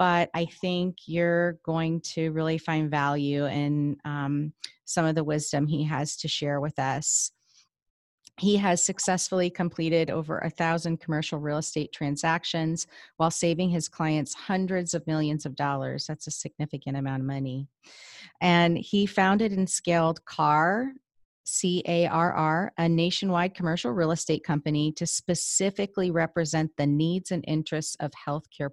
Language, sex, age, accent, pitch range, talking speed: English, female, 30-49, American, 150-175 Hz, 145 wpm